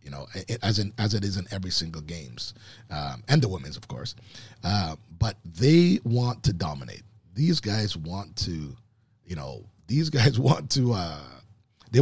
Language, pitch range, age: English, 100-135 Hz, 30-49